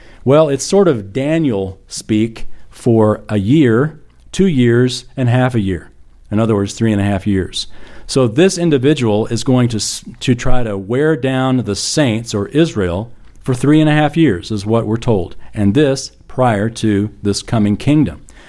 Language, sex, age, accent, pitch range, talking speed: English, male, 40-59, American, 105-155 Hz, 175 wpm